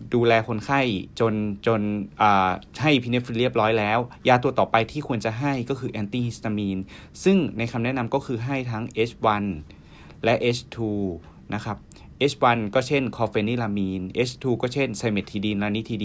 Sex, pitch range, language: male, 100-125 Hz, Thai